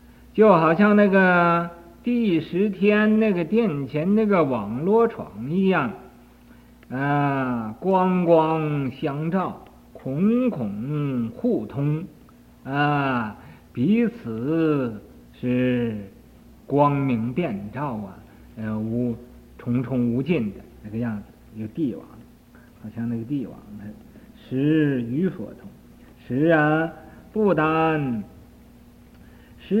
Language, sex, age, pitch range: Chinese, male, 50-69, 120-170 Hz